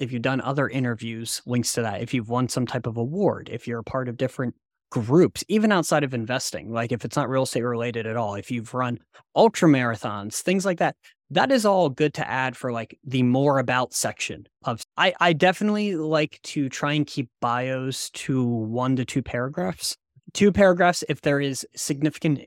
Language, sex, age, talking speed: English, male, 20-39, 205 wpm